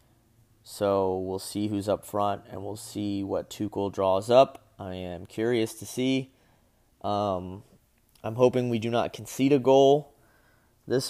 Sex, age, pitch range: male, 20-39, 95-120 Hz